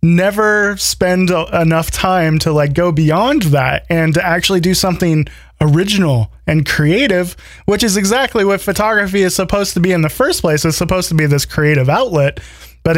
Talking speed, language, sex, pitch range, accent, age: 175 wpm, English, male, 145-180 Hz, American, 20-39